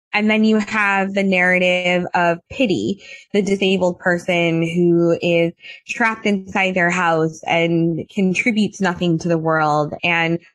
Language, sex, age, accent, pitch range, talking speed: English, female, 20-39, American, 180-230 Hz, 135 wpm